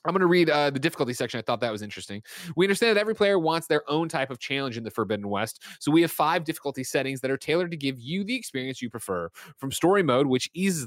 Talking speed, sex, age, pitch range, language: 270 wpm, male, 20-39, 115-155 Hz, English